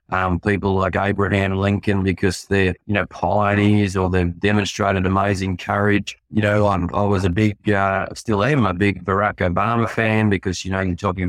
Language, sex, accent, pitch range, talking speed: English, male, Australian, 95-105 Hz, 185 wpm